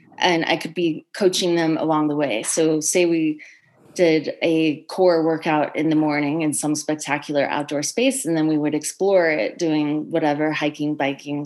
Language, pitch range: English, 155-185 Hz